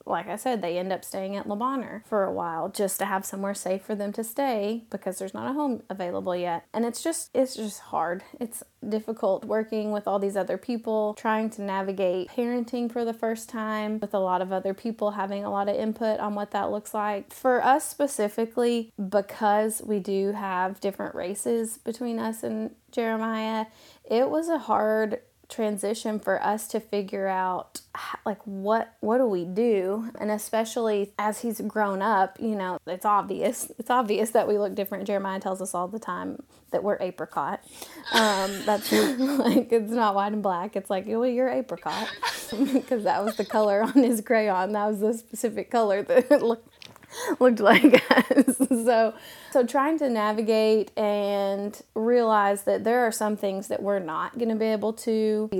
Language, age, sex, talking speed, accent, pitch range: English, 20-39, female, 185 wpm, American, 195-230 Hz